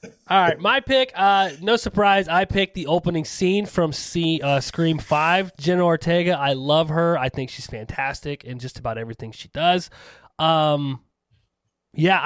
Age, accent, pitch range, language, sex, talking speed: 20-39, American, 135-175 Hz, English, male, 160 wpm